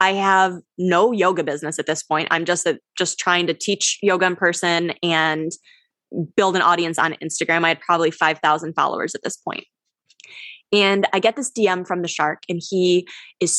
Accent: American